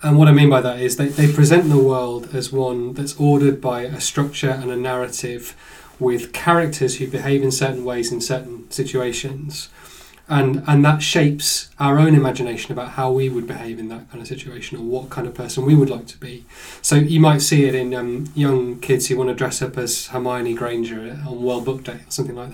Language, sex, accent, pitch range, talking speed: English, male, British, 120-145 Hz, 220 wpm